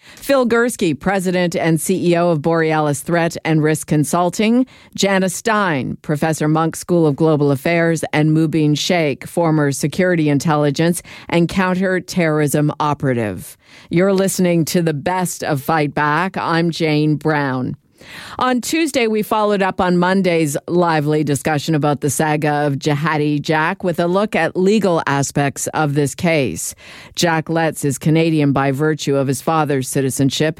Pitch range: 150-180 Hz